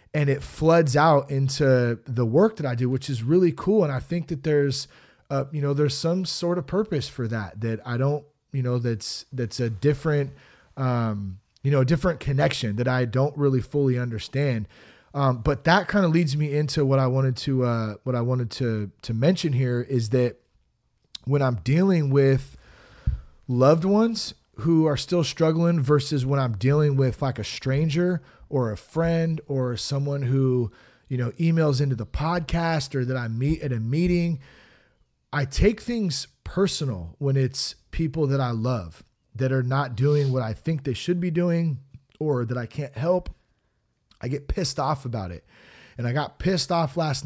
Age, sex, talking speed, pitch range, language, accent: 30-49, male, 185 wpm, 125-160 Hz, English, American